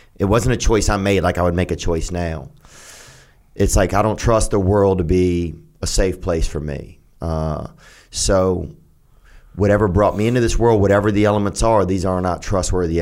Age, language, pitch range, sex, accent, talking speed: 30-49, English, 85-100 Hz, male, American, 200 wpm